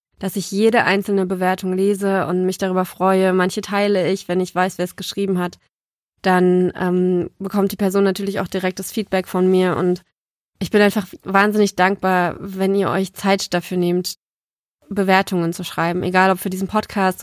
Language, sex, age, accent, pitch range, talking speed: German, female, 20-39, German, 185-200 Hz, 180 wpm